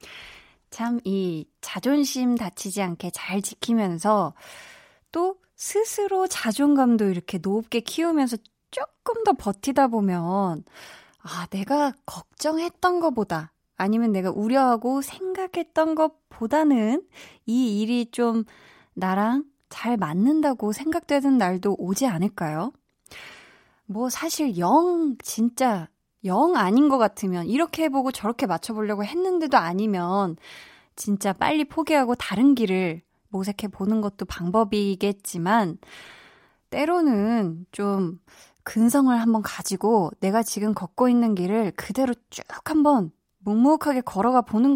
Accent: native